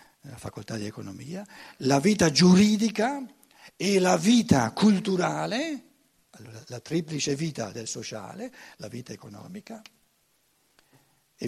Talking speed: 105 wpm